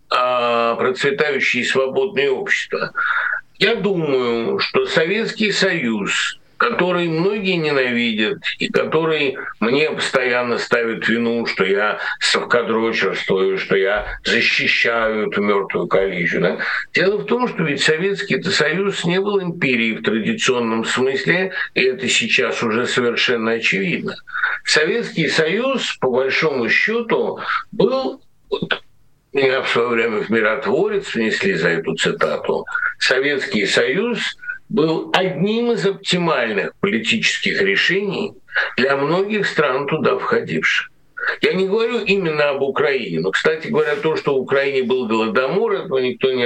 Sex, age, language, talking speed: male, 60-79, Russian, 120 wpm